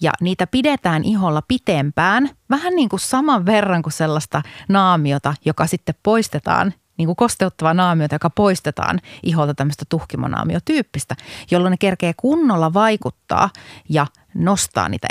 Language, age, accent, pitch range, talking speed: Finnish, 30-49, native, 165-220 Hz, 130 wpm